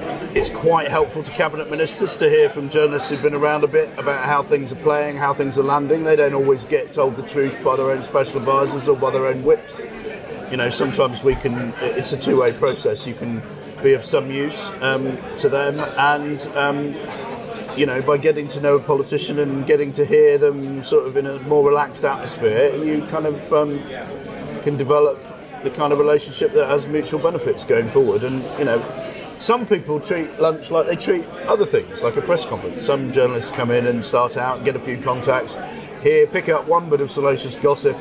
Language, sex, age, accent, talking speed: English, male, 30-49, British, 210 wpm